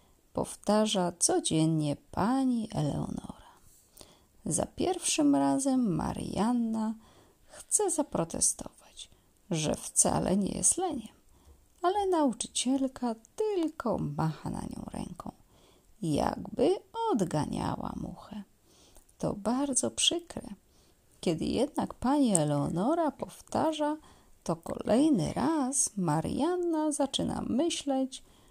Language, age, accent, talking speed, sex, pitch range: Polish, 30-49, native, 80 wpm, female, 205-300 Hz